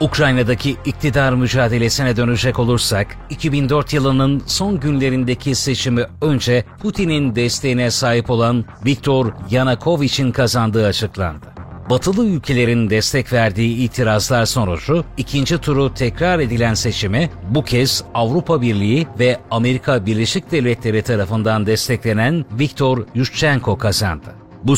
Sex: male